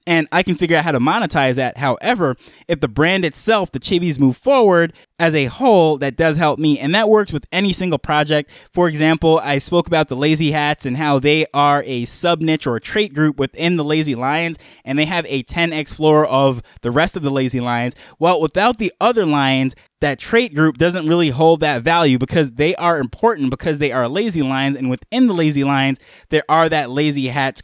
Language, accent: English, American